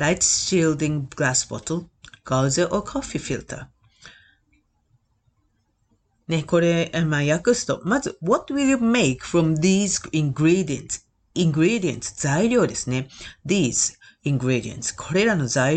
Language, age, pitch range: Japanese, 40-59, 125-180 Hz